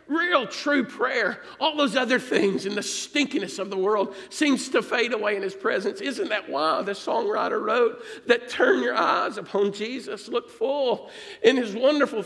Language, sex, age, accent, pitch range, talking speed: English, male, 50-69, American, 180-245 Hz, 180 wpm